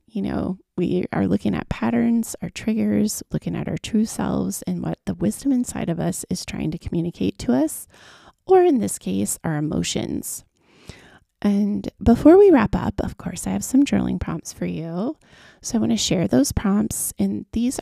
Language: English